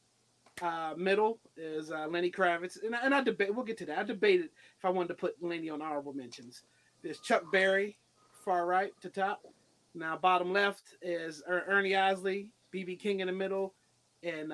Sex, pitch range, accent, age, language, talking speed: male, 170-210 Hz, American, 30-49, English, 185 wpm